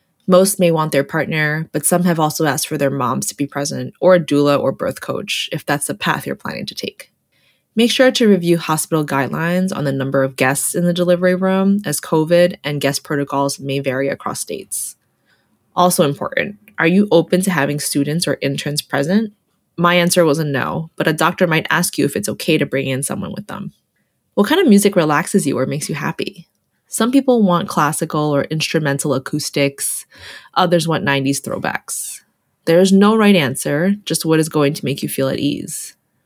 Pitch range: 145-185 Hz